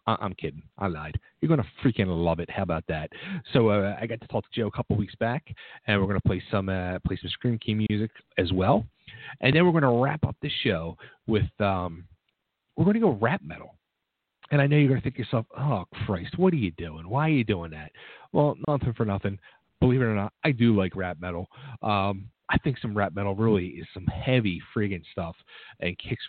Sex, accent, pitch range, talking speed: male, American, 95-140 Hz, 235 wpm